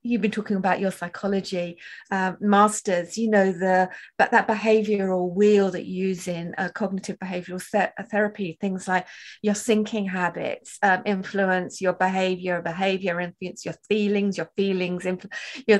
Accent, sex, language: British, female, English